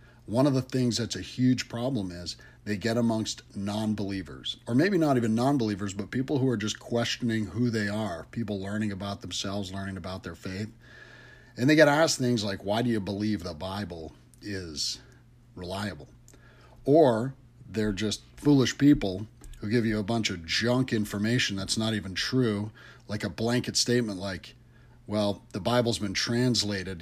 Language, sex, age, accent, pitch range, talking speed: English, male, 40-59, American, 100-120 Hz, 170 wpm